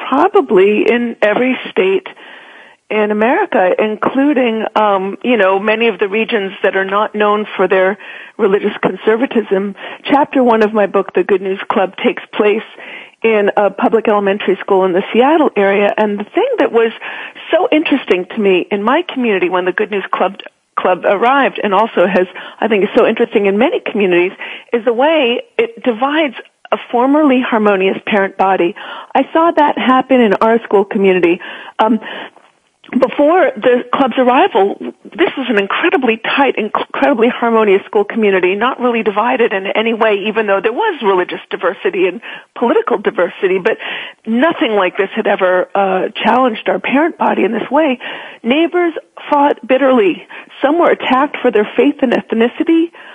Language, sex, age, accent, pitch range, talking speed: English, female, 40-59, American, 200-275 Hz, 165 wpm